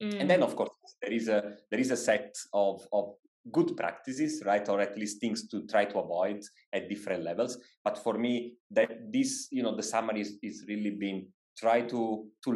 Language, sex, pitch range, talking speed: English, male, 100-140 Hz, 205 wpm